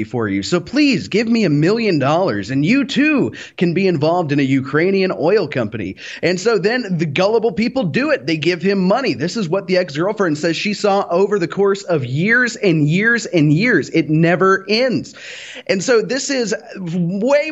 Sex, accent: male, American